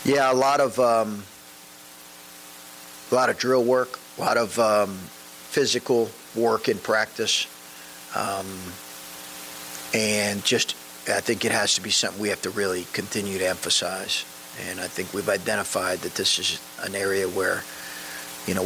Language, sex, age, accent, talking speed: English, male, 40-59, American, 155 wpm